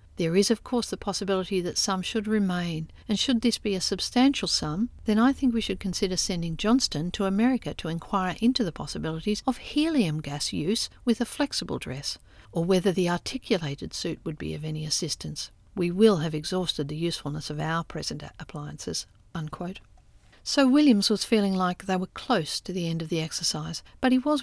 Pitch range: 160-210 Hz